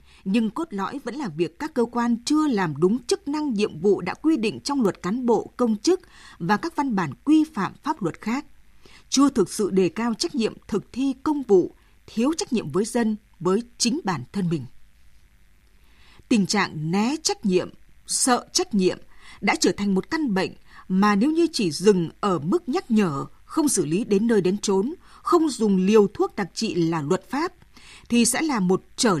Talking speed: 205 wpm